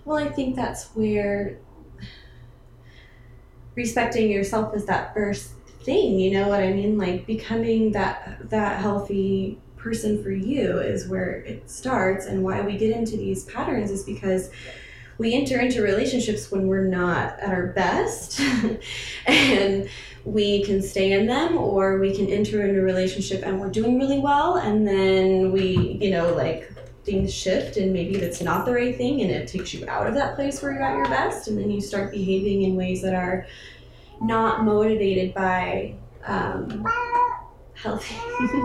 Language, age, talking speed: English, 20-39, 165 wpm